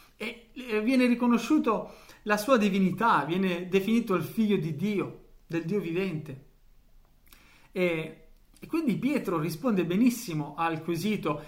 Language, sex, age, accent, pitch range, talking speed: Italian, male, 40-59, native, 160-220 Hz, 115 wpm